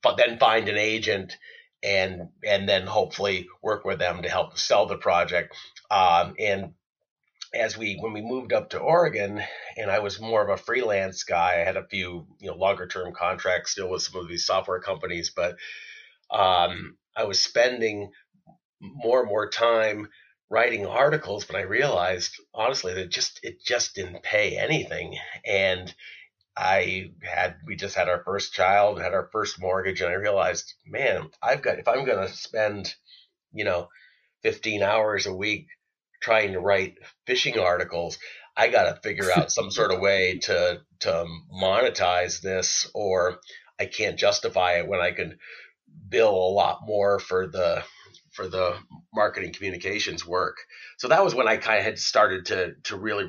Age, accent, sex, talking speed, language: 30-49, American, male, 170 wpm, English